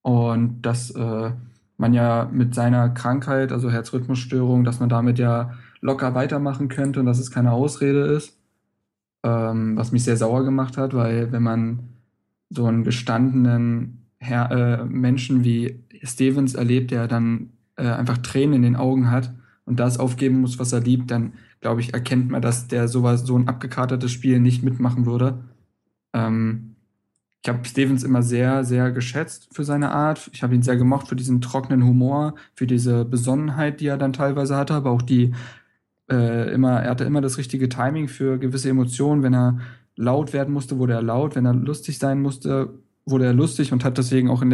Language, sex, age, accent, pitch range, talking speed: German, male, 20-39, German, 120-130 Hz, 185 wpm